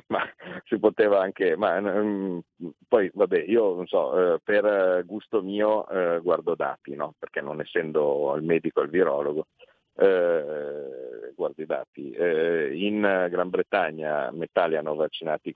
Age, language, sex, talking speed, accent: 50-69, Italian, male, 125 wpm, native